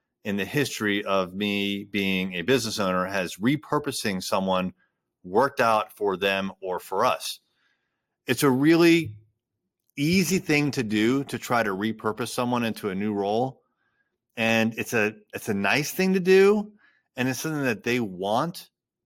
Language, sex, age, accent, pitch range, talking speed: English, male, 30-49, American, 105-145 Hz, 155 wpm